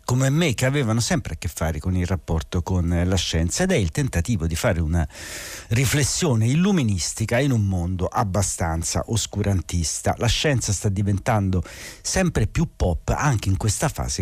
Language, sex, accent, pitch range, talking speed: Italian, male, native, 95-125 Hz, 165 wpm